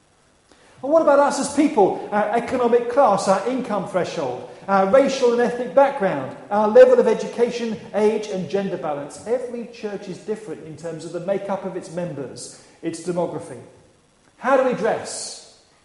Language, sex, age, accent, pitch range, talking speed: English, male, 40-59, British, 180-240 Hz, 165 wpm